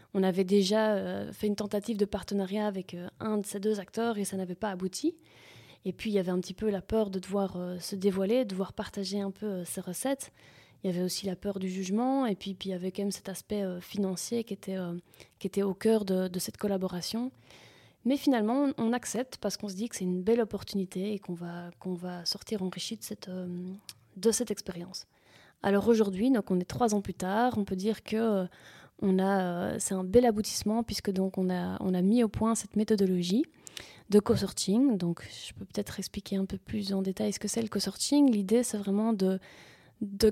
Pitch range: 190-225 Hz